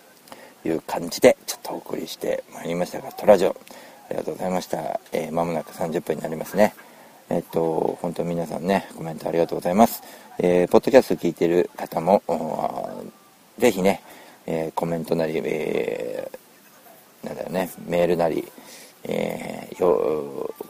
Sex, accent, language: male, native, Japanese